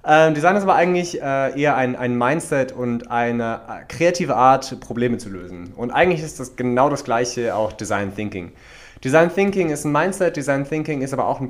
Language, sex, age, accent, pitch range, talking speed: German, male, 20-39, German, 120-145 Hz, 205 wpm